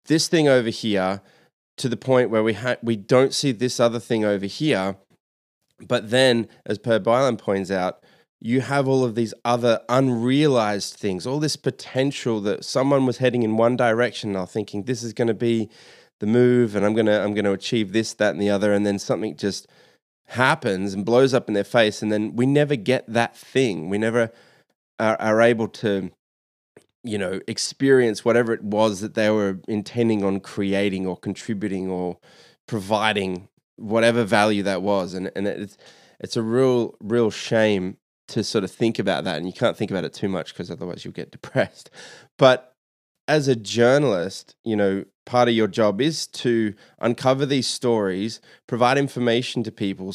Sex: male